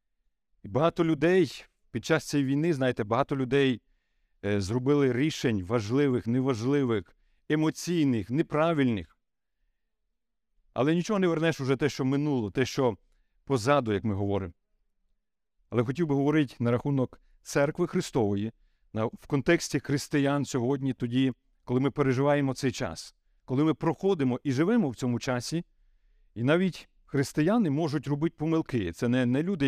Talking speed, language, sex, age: 135 wpm, Ukrainian, male, 50-69